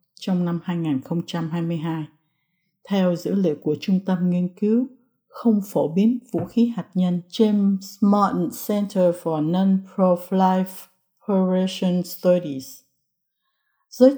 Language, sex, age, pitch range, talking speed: English, female, 60-79, 165-215 Hz, 105 wpm